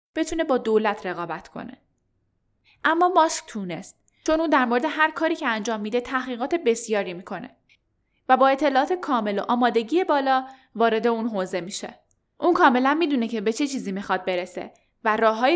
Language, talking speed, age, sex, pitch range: Persian, 165 wpm, 10-29, female, 215-285 Hz